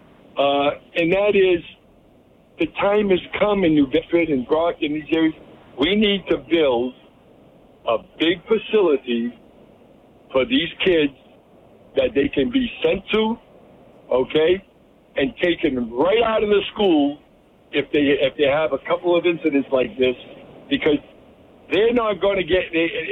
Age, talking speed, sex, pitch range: 60-79, 150 wpm, male, 145-185 Hz